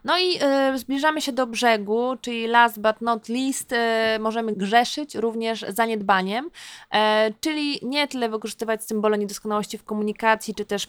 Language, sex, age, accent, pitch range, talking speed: Polish, female, 20-39, native, 210-250 Hz, 140 wpm